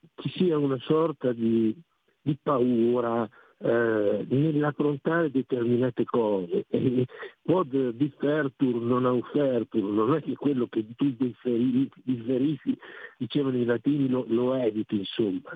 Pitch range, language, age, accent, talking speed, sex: 120-145 Hz, Italian, 50-69, native, 110 wpm, male